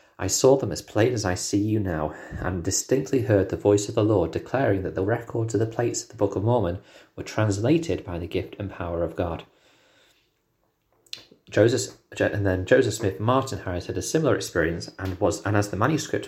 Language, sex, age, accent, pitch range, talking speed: English, male, 30-49, British, 90-105 Hz, 210 wpm